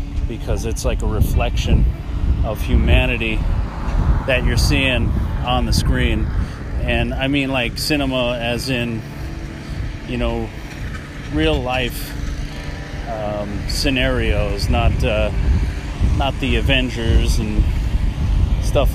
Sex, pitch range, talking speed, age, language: male, 80-120 Hz, 105 wpm, 30-49, English